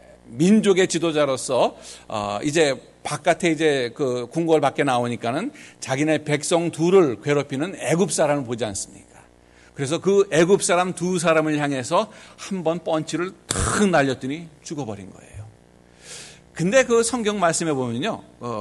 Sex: male